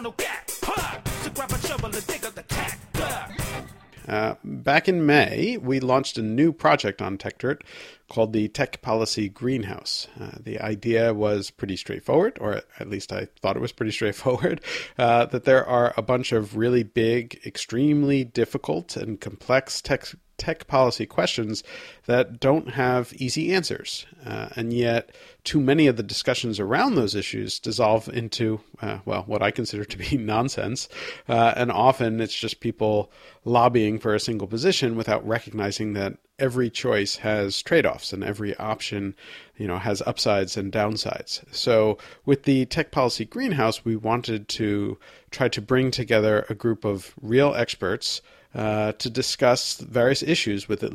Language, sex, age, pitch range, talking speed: English, male, 50-69, 105-125 Hz, 145 wpm